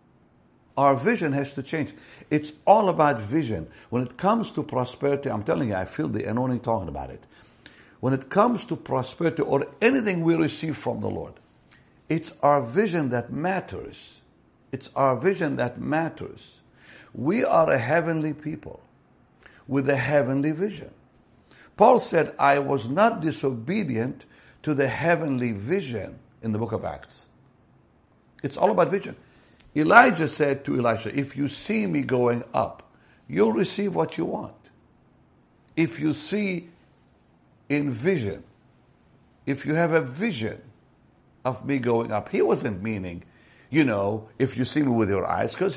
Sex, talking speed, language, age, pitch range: male, 150 wpm, English, 60-79, 125-165 Hz